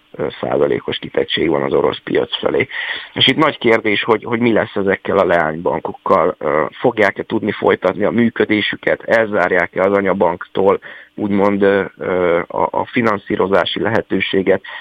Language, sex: Hungarian, male